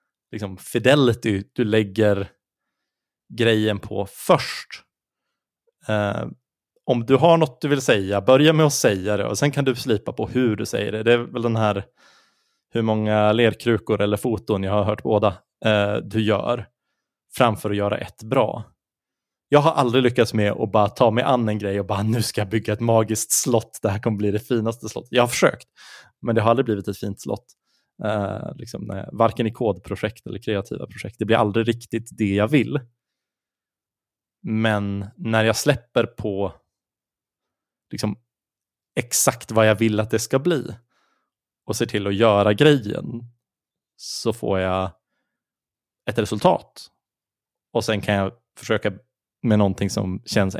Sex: male